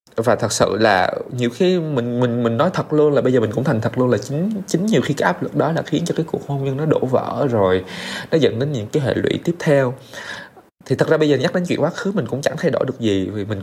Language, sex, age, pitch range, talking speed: Vietnamese, male, 20-39, 120-165 Hz, 300 wpm